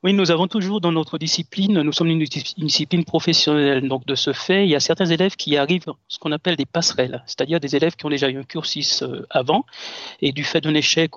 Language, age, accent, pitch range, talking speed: French, 40-59, French, 145-180 Hz, 230 wpm